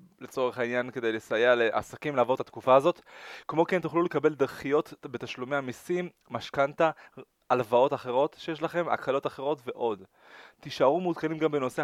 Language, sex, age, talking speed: Hebrew, male, 20-39, 140 wpm